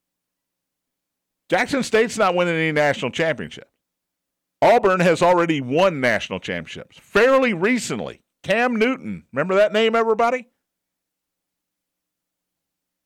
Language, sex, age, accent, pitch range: English, male, 50-69, American, 120-175 Hz